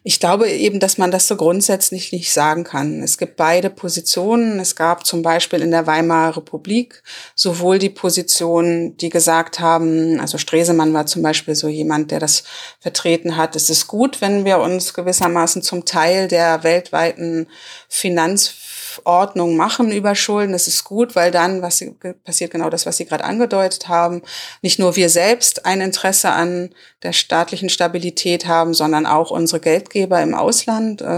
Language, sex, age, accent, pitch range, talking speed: German, female, 30-49, German, 165-195 Hz, 165 wpm